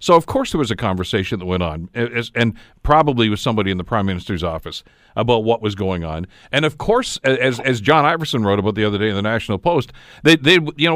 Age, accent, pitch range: 50-69, American, 110-150 Hz